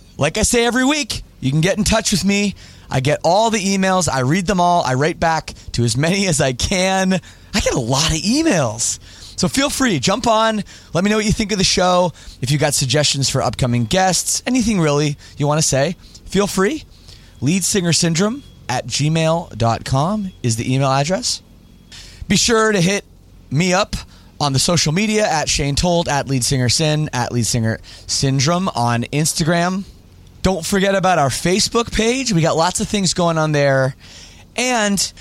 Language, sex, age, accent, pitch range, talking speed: English, male, 20-39, American, 130-195 Hz, 180 wpm